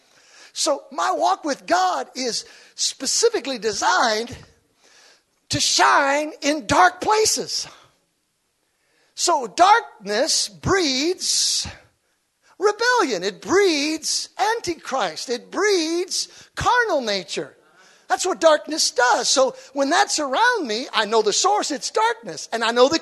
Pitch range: 180-300 Hz